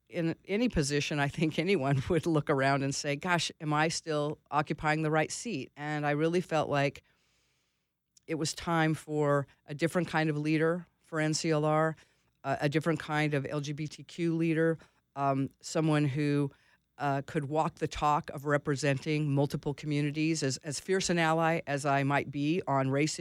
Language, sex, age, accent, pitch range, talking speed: English, female, 40-59, American, 140-165 Hz, 170 wpm